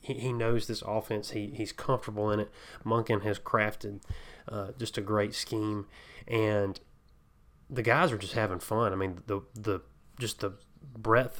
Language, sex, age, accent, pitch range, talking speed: English, male, 30-49, American, 100-115 Hz, 170 wpm